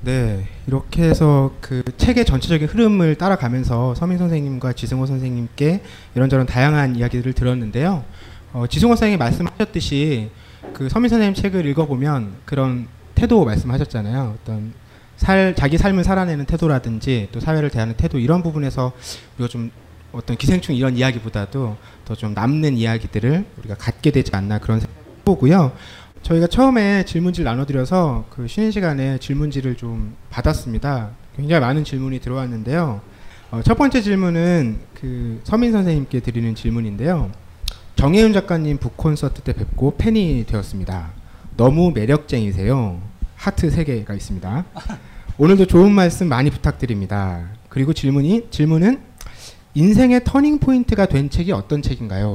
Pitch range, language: 115-165 Hz, Korean